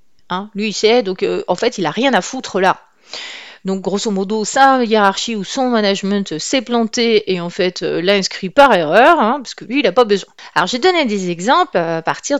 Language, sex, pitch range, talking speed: French, female, 195-275 Hz, 225 wpm